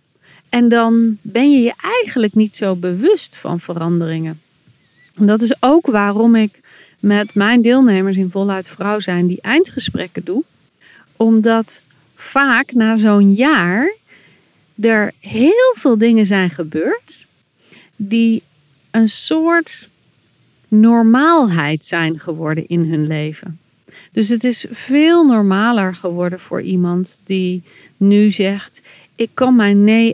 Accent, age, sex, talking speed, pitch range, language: Dutch, 40-59, female, 125 wpm, 190-240 Hz, Dutch